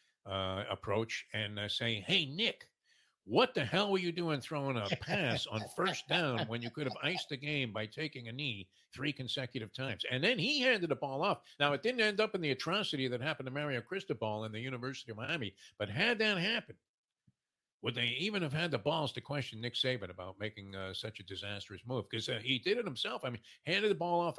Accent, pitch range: American, 110-150 Hz